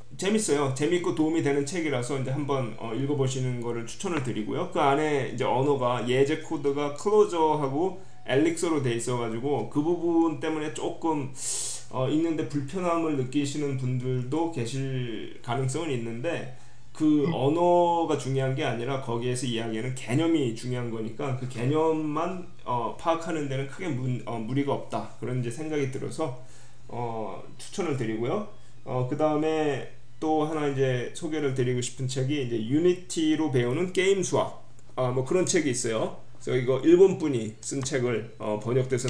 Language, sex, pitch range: Korean, male, 125-160 Hz